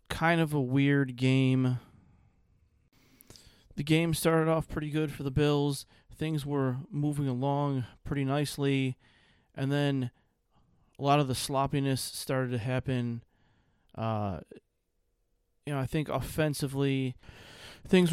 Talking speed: 120 wpm